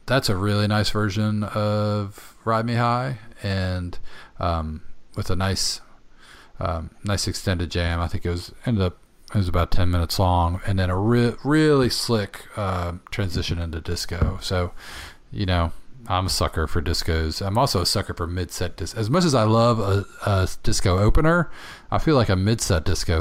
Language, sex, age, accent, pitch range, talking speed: English, male, 40-59, American, 85-110 Hz, 185 wpm